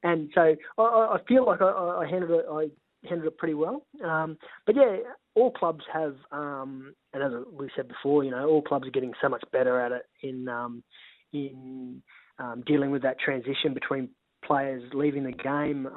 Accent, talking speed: Australian, 190 wpm